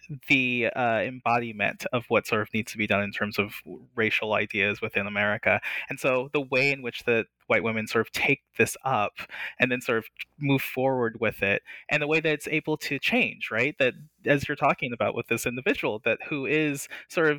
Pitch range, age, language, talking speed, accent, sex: 120-175 Hz, 20-39, English, 210 wpm, American, male